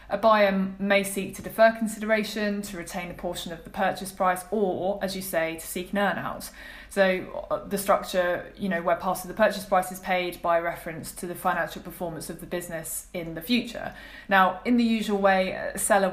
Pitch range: 180-205 Hz